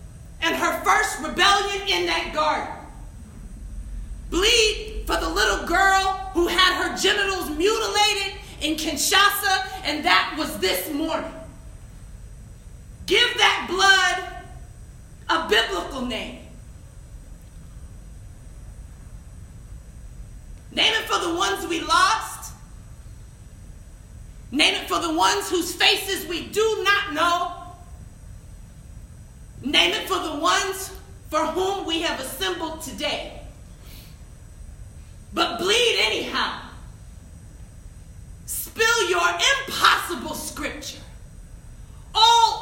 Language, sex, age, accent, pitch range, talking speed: English, female, 40-59, American, 320-400 Hz, 95 wpm